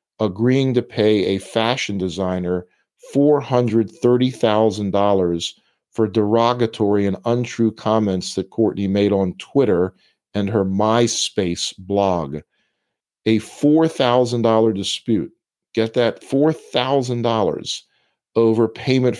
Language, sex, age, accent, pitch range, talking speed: English, male, 50-69, American, 95-115 Hz, 90 wpm